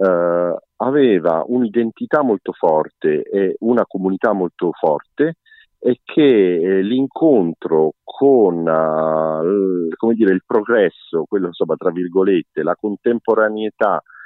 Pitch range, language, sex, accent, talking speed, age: 95-120 Hz, Italian, male, native, 115 wpm, 50-69